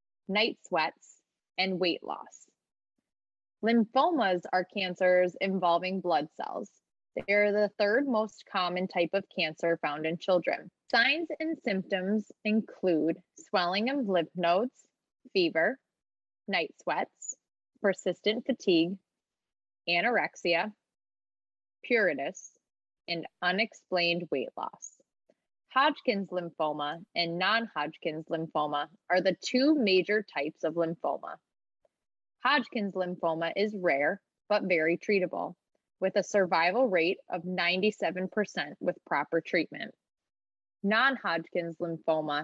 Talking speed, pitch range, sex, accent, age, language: 100 wpm, 170-215 Hz, female, American, 20-39, English